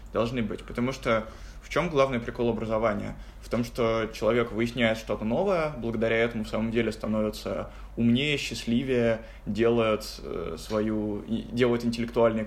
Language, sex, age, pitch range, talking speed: Russian, male, 20-39, 110-120 Hz, 130 wpm